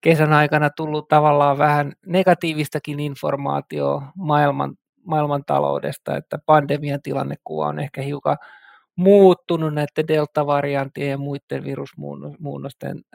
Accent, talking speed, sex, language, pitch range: native, 95 wpm, male, Finnish, 145-165 Hz